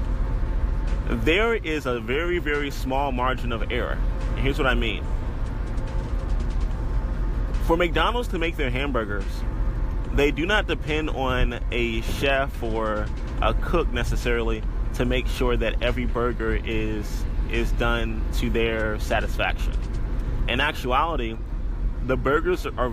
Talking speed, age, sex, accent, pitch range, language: 125 wpm, 20-39, male, American, 110-130 Hz, English